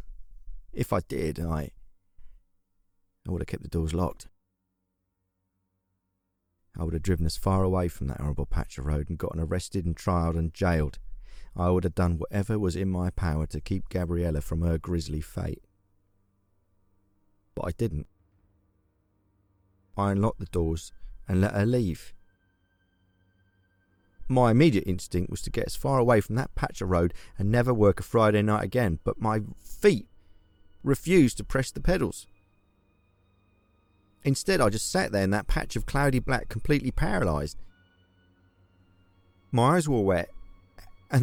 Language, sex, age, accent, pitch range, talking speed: English, male, 30-49, British, 90-105 Hz, 155 wpm